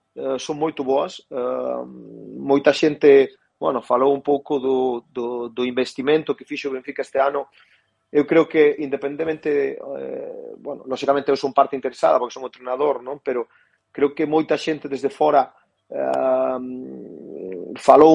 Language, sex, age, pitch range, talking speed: Portuguese, male, 30-49, 130-160 Hz, 140 wpm